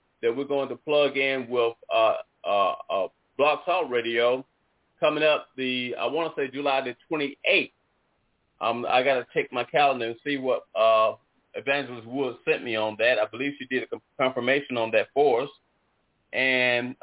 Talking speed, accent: 180 wpm, American